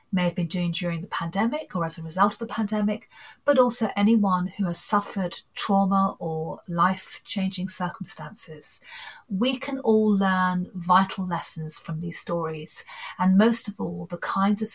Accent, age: British, 40-59